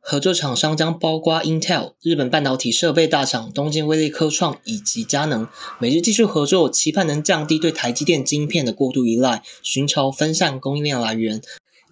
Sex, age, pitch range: male, 20-39, 135-165 Hz